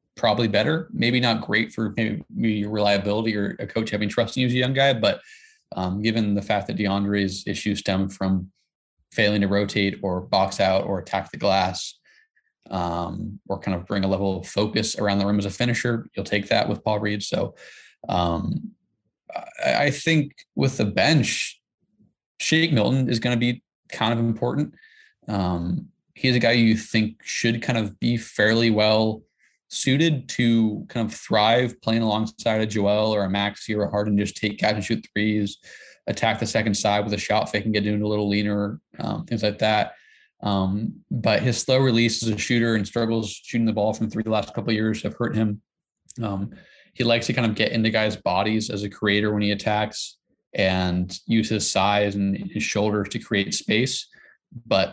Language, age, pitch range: English, 20-39, 100-115 Hz